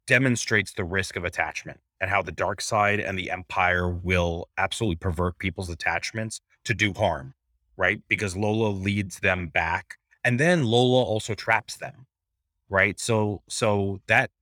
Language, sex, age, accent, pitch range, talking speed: English, male, 30-49, American, 90-110 Hz, 155 wpm